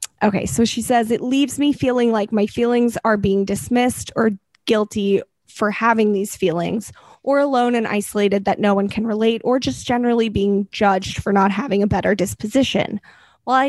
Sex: female